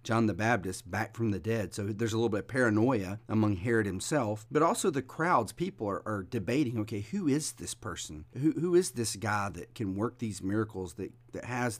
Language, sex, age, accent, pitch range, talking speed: English, male, 40-59, American, 100-120 Hz, 220 wpm